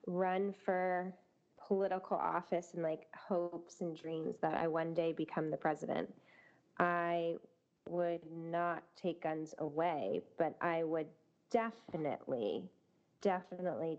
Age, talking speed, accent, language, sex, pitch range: 20-39, 115 wpm, American, English, female, 170-215 Hz